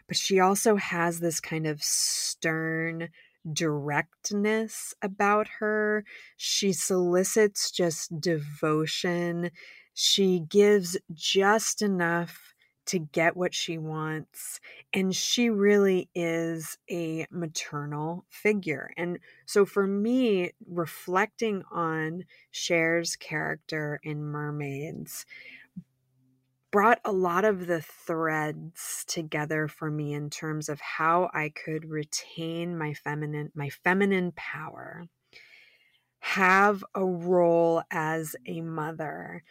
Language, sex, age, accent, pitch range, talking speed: English, female, 30-49, American, 155-200 Hz, 105 wpm